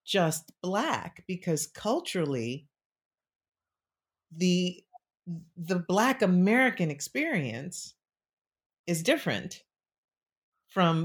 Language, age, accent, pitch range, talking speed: English, 40-59, American, 140-185 Hz, 65 wpm